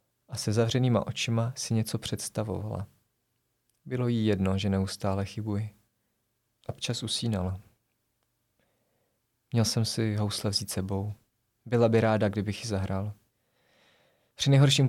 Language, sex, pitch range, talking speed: Czech, male, 105-120 Hz, 120 wpm